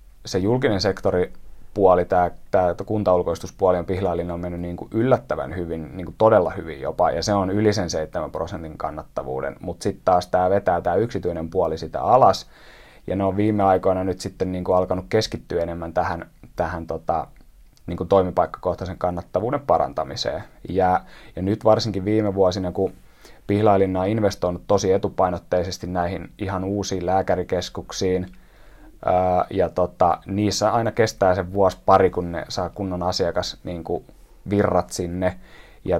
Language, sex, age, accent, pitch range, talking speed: Finnish, male, 30-49, native, 90-100 Hz, 140 wpm